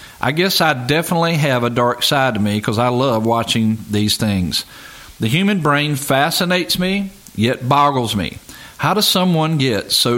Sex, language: male, English